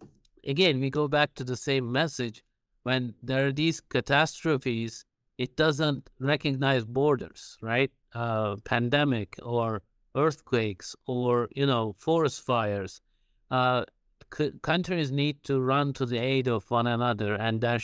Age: 50-69